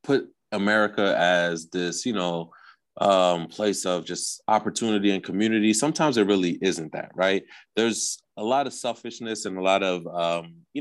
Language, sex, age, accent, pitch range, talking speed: English, male, 30-49, American, 90-115 Hz, 165 wpm